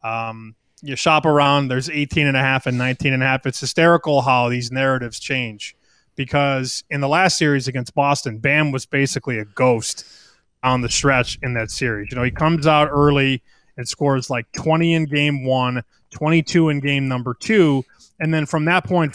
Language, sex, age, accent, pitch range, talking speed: English, male, 30-49, American, 135-175 Hz, 190 wpm